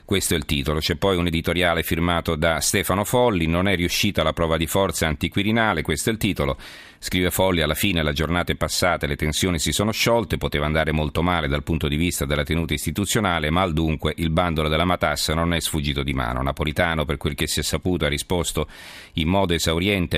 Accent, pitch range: native, 75-95 Hz